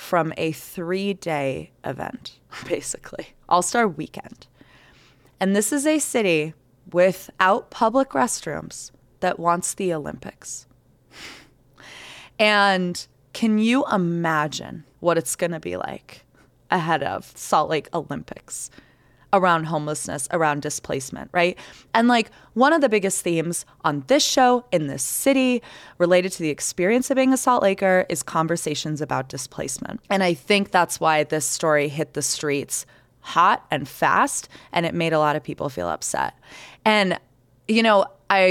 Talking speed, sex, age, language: 140 wpm, female, 20-39, English